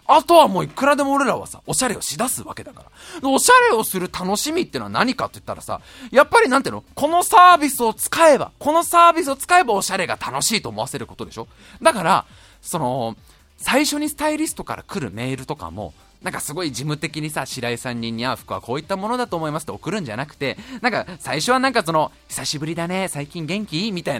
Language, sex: Japanese, male